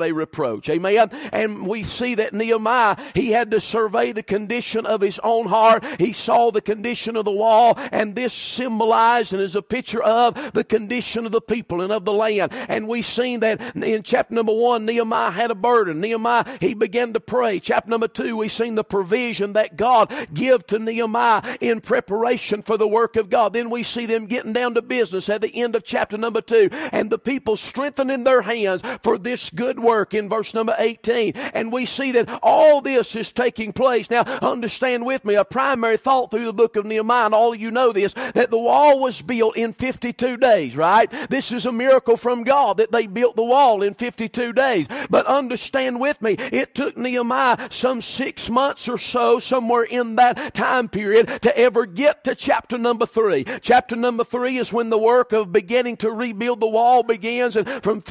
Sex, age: male, 50-69